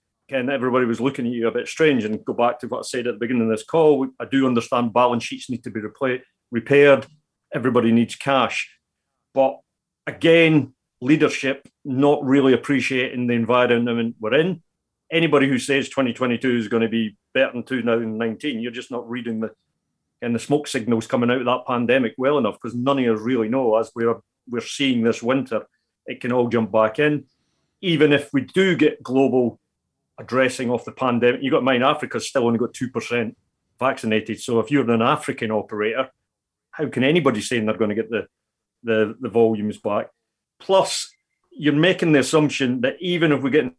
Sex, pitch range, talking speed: male, 115-140 Hz, 190 wpm